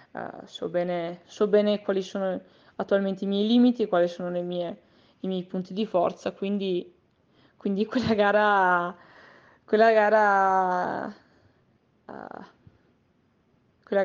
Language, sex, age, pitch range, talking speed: Italian, female, 20-39, 180-205 Hz, 125 wpm